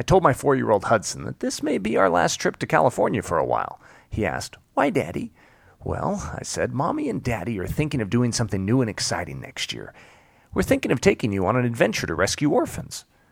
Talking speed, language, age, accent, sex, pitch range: 215 wpm, English, 40-59, American, male, 100-145 Hz